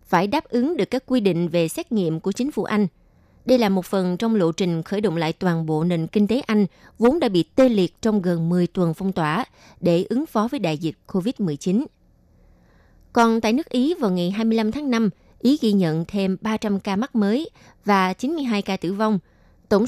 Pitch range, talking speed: 175-235 Hz, 215 wpm